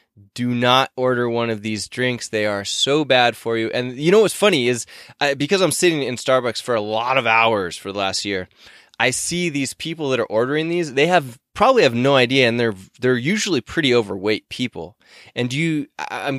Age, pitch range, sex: 20-39, 110-135 Hz, male